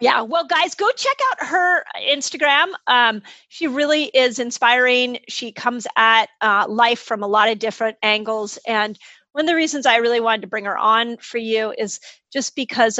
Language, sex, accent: English, female, American